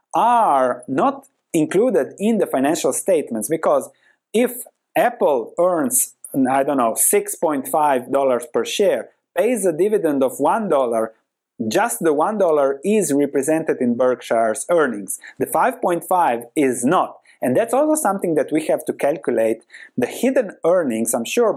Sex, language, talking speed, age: male, English, 135 wpm, 30-49